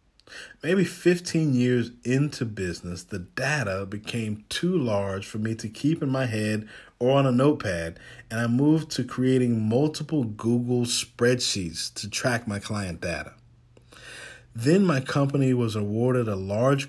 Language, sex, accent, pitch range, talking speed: English, male, American, 105-130 Hz, 145 wpm